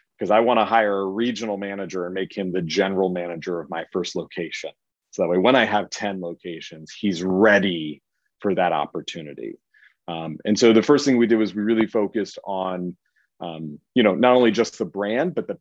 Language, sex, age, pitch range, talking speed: English, male, 30-49, 90-115 Hz, 205 wpm